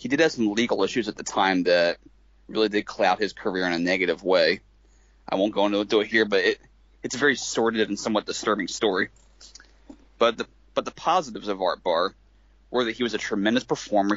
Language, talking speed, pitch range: English, 210 wpm, 80-115 Hz